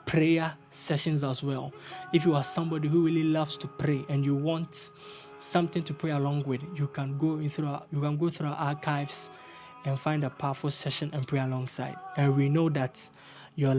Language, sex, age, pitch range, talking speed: English, male, 20-39, 140-165 Hz, 190 wpm